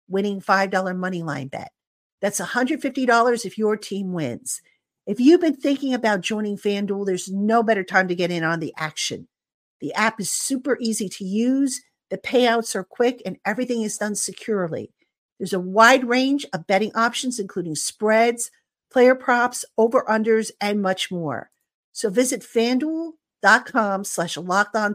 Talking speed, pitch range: 150 wpm, 195-250 Hz